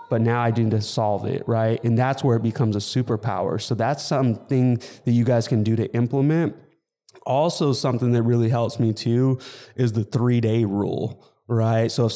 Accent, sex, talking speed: American, male, 190 wpm